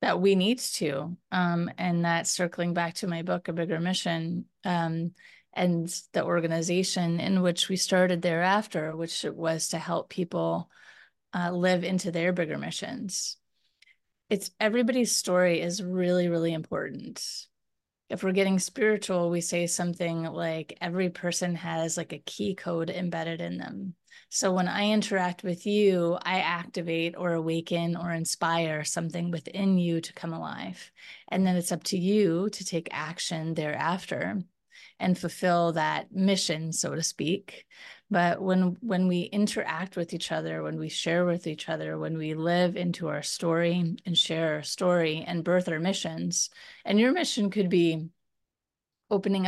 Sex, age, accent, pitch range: female, 30-49, American, 170-190 Hz